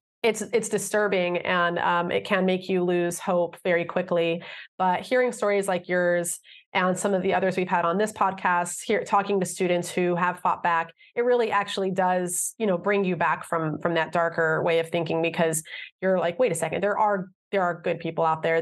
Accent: American